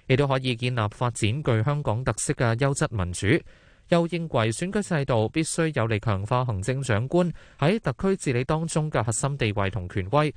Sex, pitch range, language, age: male, 110-145 Hz, Chinese, 20-39